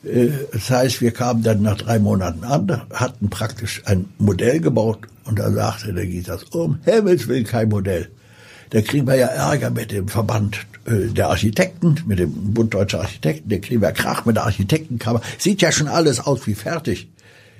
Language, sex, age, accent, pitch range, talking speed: German, male, 60-79, German, 100-120 Hz, 180 wpm